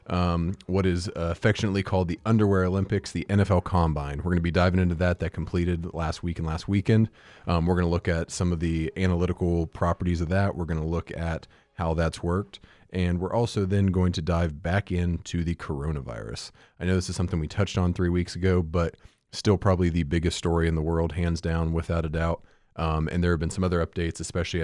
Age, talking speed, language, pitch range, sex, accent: 30-49, 220 wpm, English, 80-95 Hz, male, American